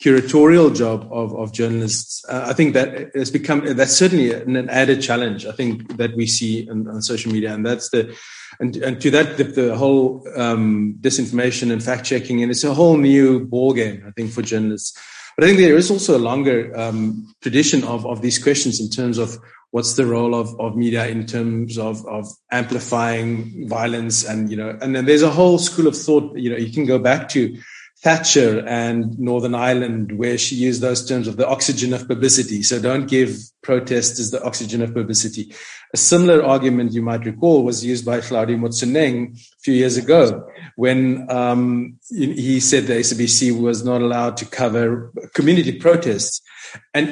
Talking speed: 190 wpm